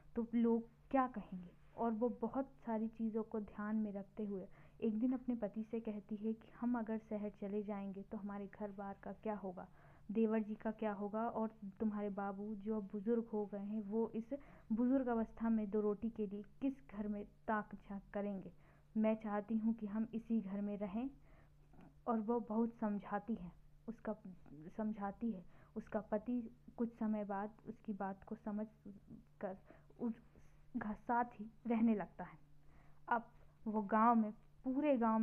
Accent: native